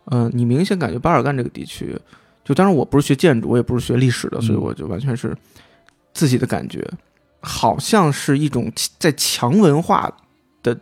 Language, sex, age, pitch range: Chinese, male, 20-39, 120-165 Hz